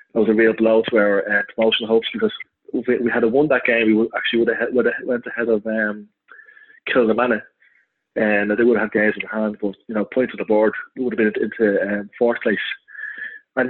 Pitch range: 110-130 Hz